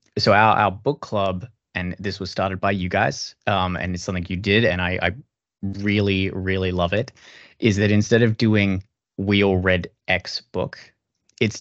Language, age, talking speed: English, 20-39, 185 wpm